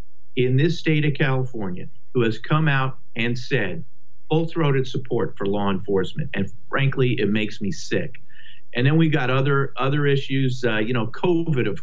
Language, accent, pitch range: English, American, 110-140 Hz